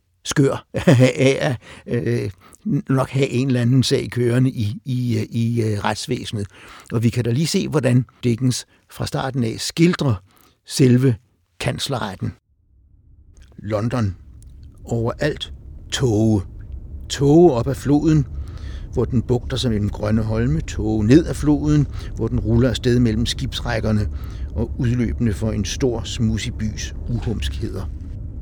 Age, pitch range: 60-79, 95-130 Hz